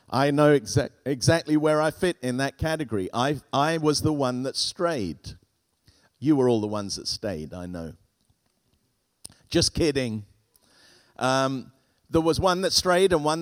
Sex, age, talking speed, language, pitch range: male, 50-69, 155 wpm, English, 125-160 Hz